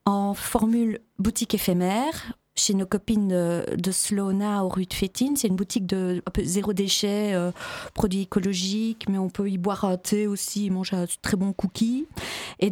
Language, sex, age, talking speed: French, female, 40-59, 185 wpm